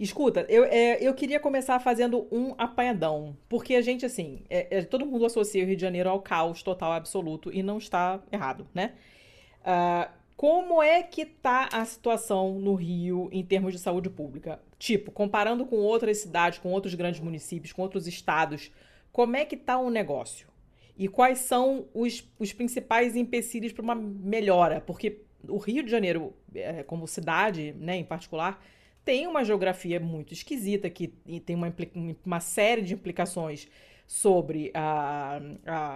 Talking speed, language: 165 wpm, Portuguese